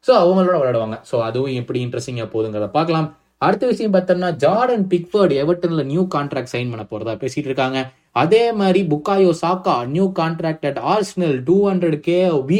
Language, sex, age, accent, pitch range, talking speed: Tamil, male, 20-39, native, 130-185 Hz, 90 wpm